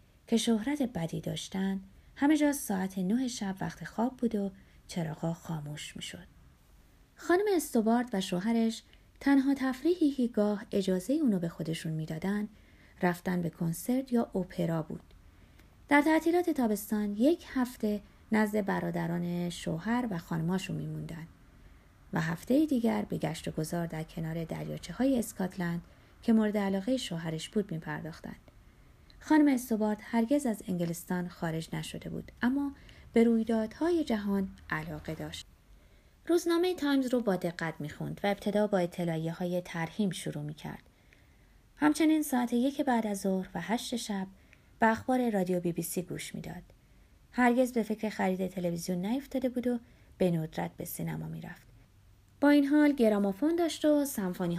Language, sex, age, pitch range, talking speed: Persian, female, 30-49, 170-245 Hz, 145 wpm